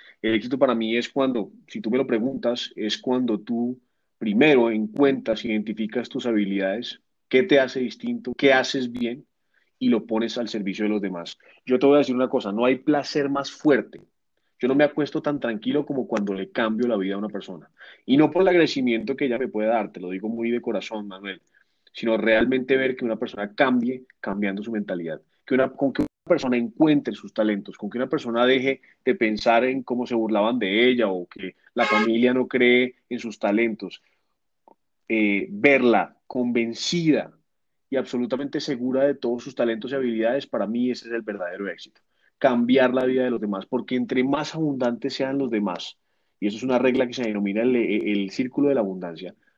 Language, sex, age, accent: Spanish, male, 30-49, Colombian